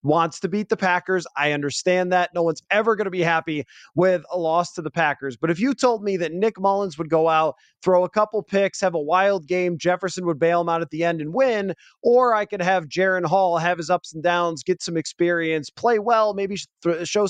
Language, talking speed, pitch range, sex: English, 235 wpm, 160-210 Hz, male